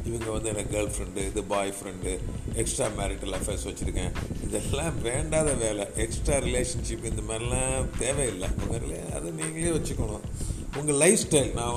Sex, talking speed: male, 150 wpm